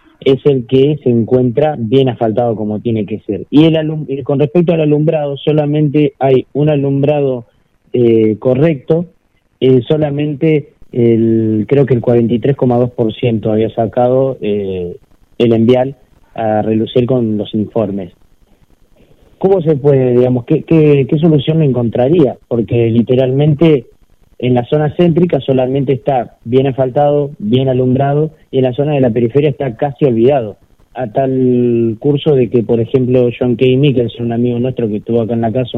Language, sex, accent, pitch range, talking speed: Spanish, male, Argentinian, 115-140 Hz, 155 wpm